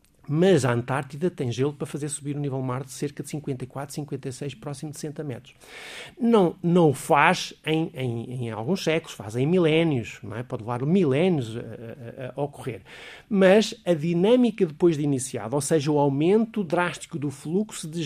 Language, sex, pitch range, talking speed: Portuguese, male, 135-175 Hz, 170 wpm